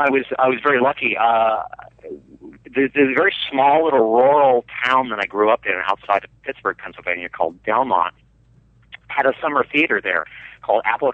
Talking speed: 175 wpm